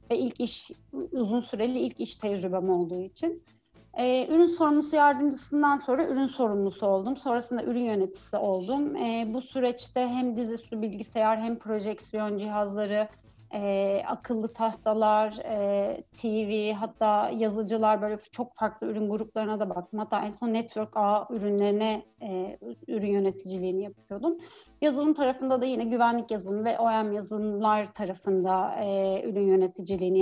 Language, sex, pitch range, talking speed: Turkish, female, 205-255 Hz, 135 wpm